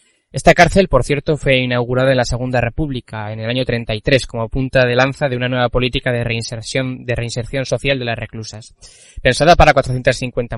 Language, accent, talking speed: Spanish, Spanish, 185 wpm